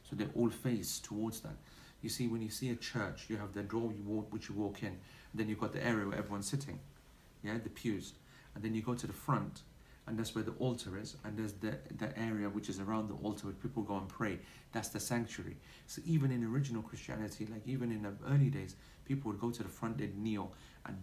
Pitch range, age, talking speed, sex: 100-115 Hz, 40-59, 240 wpm, male